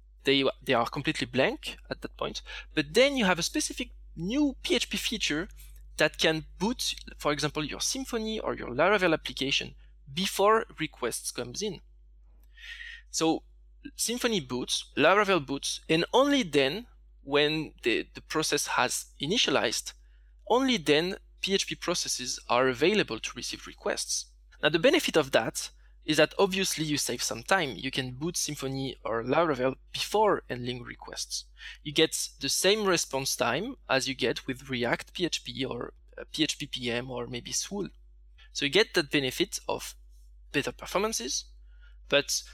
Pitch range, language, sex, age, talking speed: 130-195 Hz, English, male, 20-39, 145 wpm